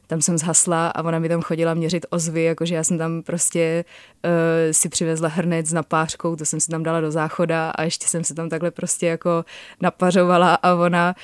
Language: Czech